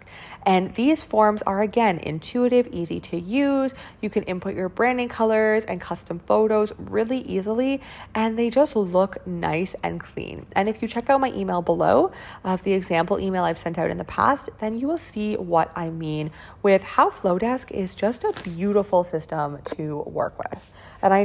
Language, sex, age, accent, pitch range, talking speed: English, female, 20-39, American, 180-235 Hz, 185 wpm